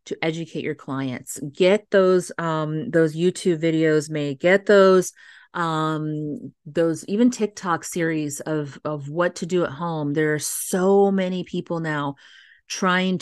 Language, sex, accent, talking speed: English, female, American, 145 wpm